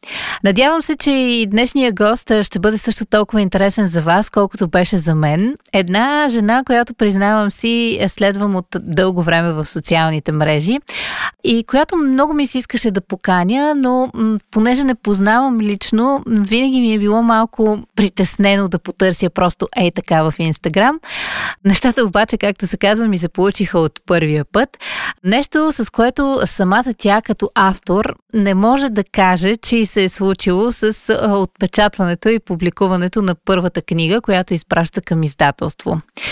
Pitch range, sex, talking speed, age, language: 180-230 Hz, female, 160 wpm, 20-39, Bulgarian